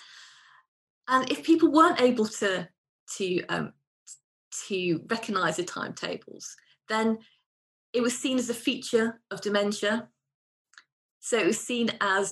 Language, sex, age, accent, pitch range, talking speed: English, female, 30-49, British, 180-235 Hz, 115 wpm